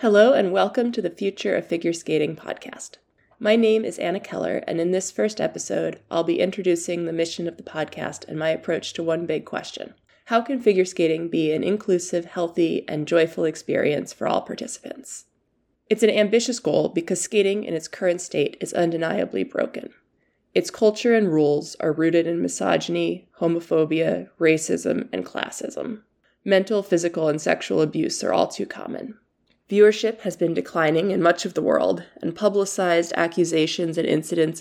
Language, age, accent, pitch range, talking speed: English, 20-39, American, 160-200 Hz, 170 wpm